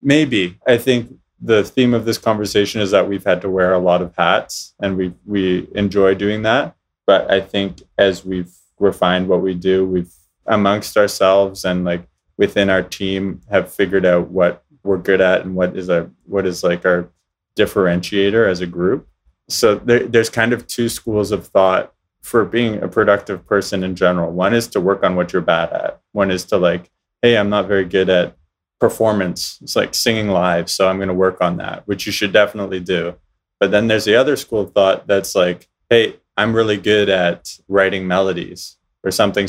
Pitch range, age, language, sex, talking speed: 90-100 Hz, 20-39, English, male, 200 wpm